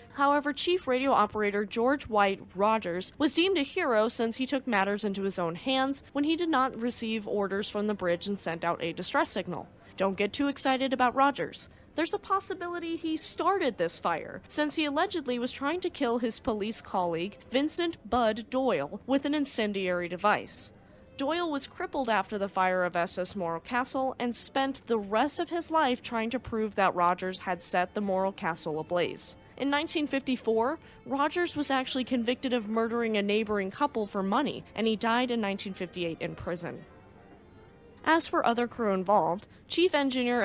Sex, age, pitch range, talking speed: female, 20-39, 190-275 Hz, 175 wpm